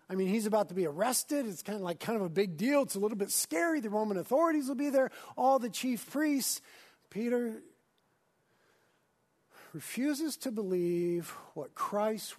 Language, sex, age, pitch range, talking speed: English, male, 50-69, 195-270 Hz, 180 wpm